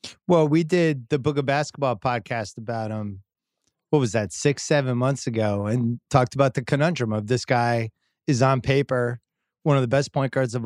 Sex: male